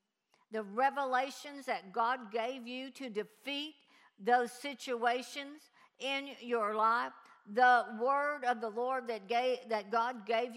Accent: American